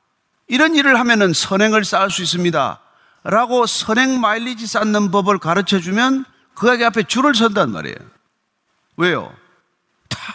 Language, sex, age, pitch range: Korean, male, 40-59, 200-275 Hz